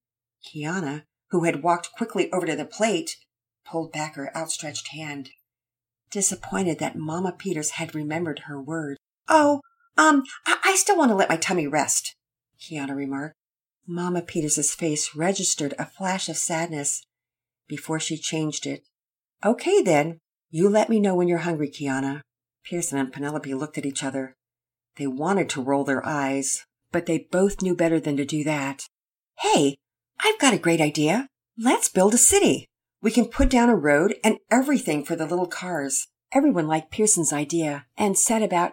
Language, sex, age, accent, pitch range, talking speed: English, female, 50-69, American, 145-195 Hz, 165 wpm